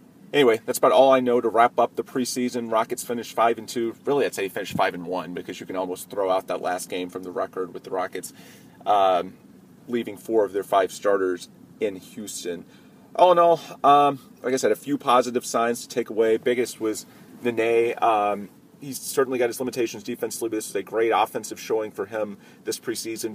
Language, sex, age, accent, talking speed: English, male, 30-49, American, 210 wpm